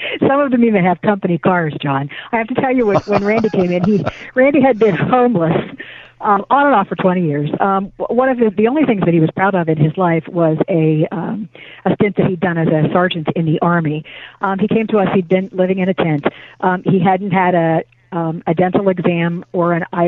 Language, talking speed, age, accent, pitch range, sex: English, 240 wpm, 50-69, American, 170-205 Hz, female